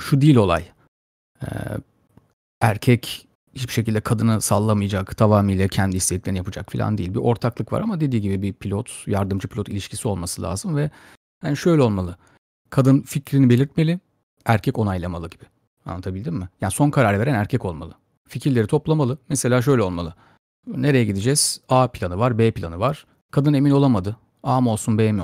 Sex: male